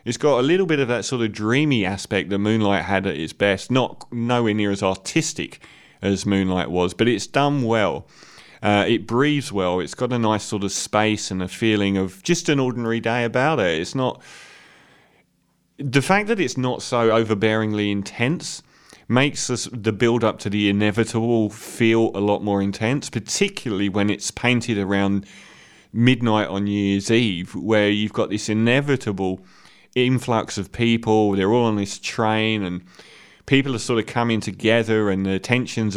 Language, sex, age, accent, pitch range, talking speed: English, male, 30-49, British, 100-125 Hz, 175 wpm